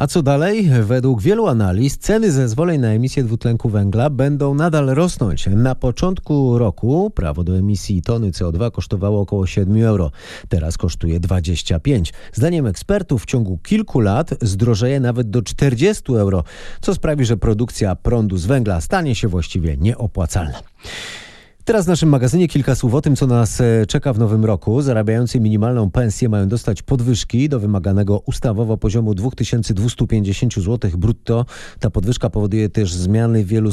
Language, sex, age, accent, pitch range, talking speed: Polish, male, 30-49, native, 100-135 Hz, 150 wpm